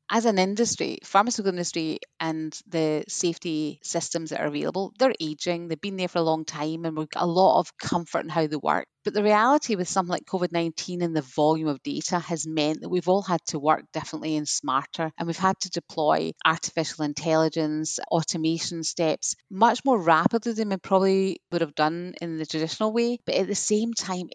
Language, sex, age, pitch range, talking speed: English, female, 30-49, 155-185 Hz, 205 wpm